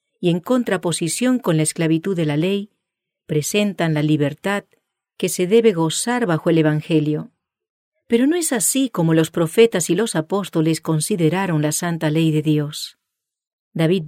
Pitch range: 160-225 Hz